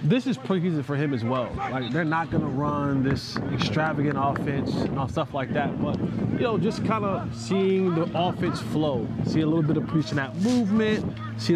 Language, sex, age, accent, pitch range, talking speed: English, male, 20-39, American, 145-180 Hz, 210 wpm